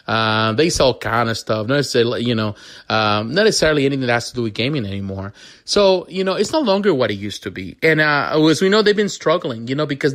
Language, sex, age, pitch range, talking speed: English, male, 30-49, 115-155 Hz, 240 wpm